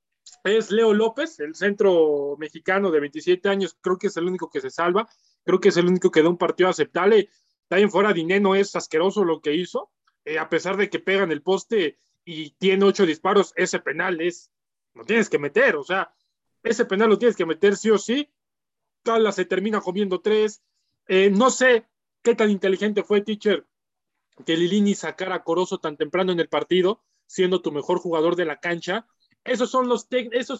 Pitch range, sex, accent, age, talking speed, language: 175-220 Hz, male, Mexican, 20-39, 200 wpm, Spanish